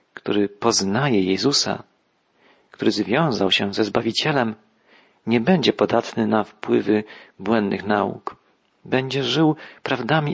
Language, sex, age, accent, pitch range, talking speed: Polish, male, 40-59, native, 105-140 Hz, 105 wpm